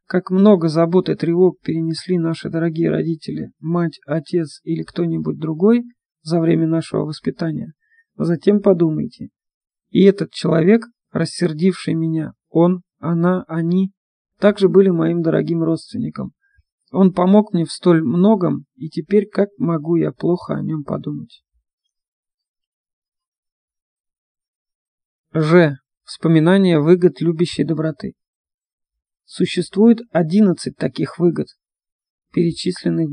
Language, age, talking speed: Russian, 40-59, 105 wpm